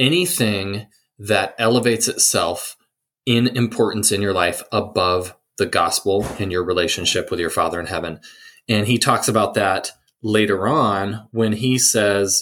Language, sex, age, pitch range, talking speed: English, male, 20-39, 100-125 Hz, 145 wpm